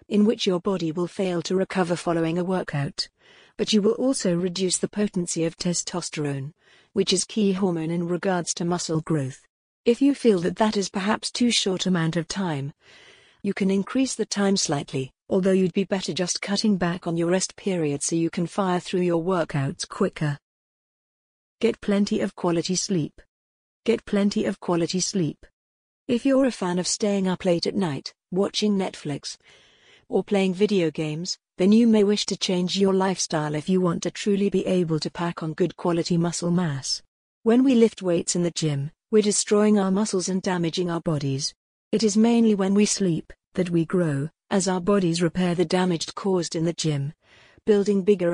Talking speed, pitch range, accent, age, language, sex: 185 wpm, 170-200 Hz, British, 50-69, English, female